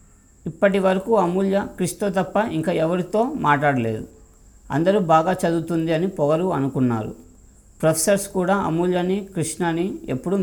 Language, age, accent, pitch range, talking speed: Telugu, 50-69, native, 125-190 Hz, 110 wpm